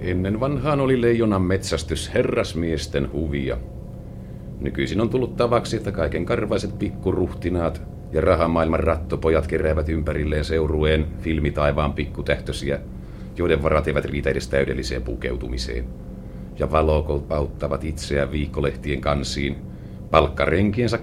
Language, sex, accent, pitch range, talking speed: Finnish, male, native, 70-100 Hz, 105 wpm